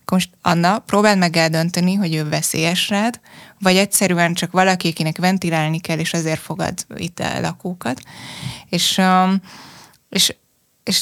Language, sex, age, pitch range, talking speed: Hungarian, female, 20-39, 170-200 Hz, 130 wpm